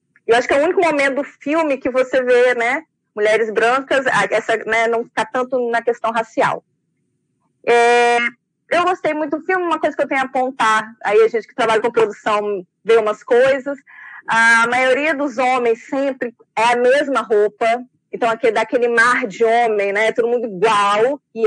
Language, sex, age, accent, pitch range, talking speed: Portuguese, female, 20-39, Brazilian, 210-260 Hz, 190 wpm